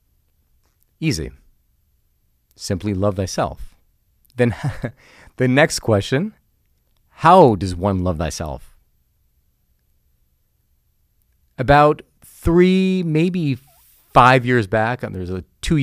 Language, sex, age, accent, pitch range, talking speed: English, male, 30-49, American, 95-125 Hz, 85 wpm